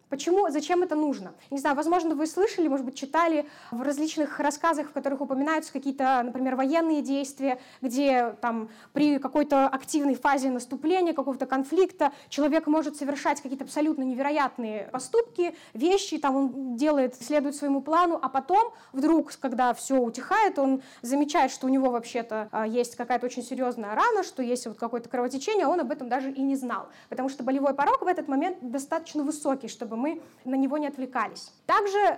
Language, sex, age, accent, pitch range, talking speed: Russian, female, 20-39, native, 255-310 Hz, 170 wpm